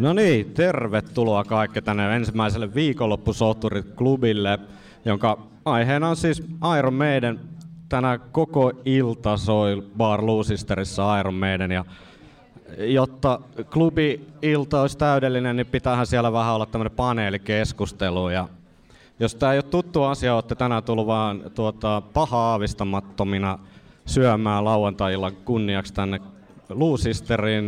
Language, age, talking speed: Finnish, 30-49, 110 wpm